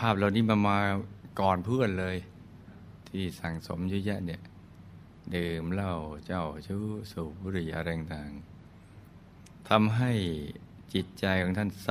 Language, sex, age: Thai, male, 60-79